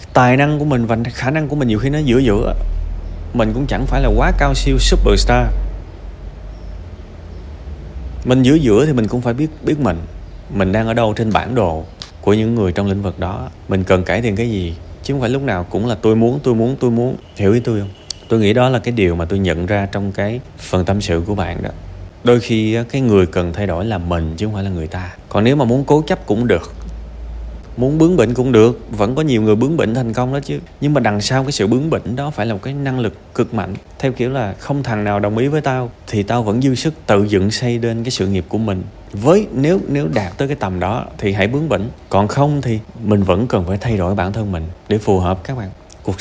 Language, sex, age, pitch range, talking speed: Vietnamese, male, 20-39, 95-130 Hz, 255 wpm